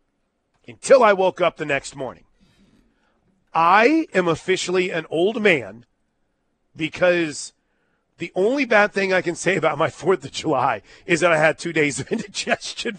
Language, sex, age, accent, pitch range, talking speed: English, male, 40-59, American, 145-200 Hz, 155 wpm